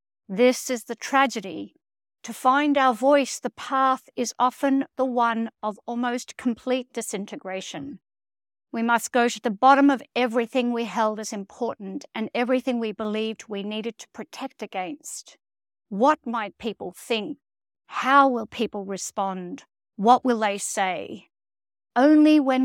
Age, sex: 50-69, female